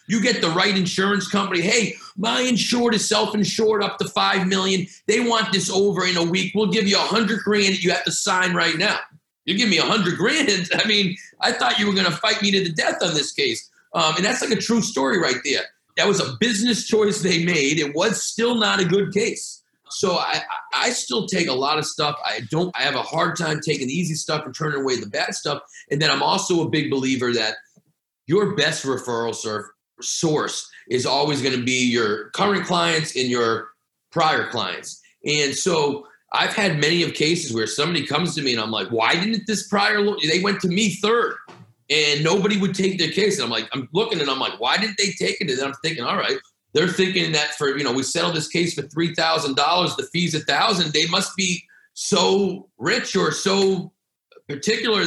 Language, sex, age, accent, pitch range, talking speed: English, male, 40-59, American, 155-205 Hz, 220 wpm